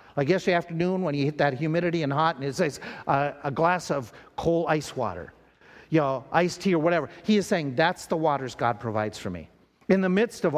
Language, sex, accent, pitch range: English, male, American, 155-215 Hz